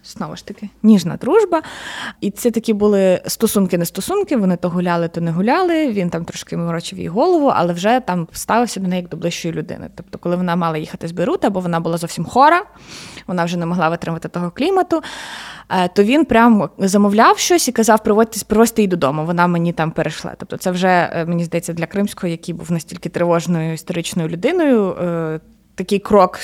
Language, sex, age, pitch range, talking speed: Ukrainian, female, 20-39, 175-230 Hz, 185 wpm